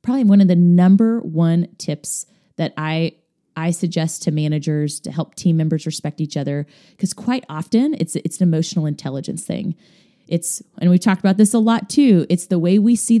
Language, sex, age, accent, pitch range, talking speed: English, female, 30-49, American, 160-200 Hz, 195 wpm